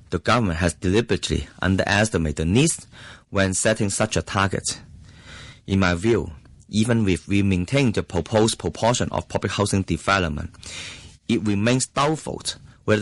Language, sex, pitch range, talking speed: English, male, 95-120 Hz, 140 wpm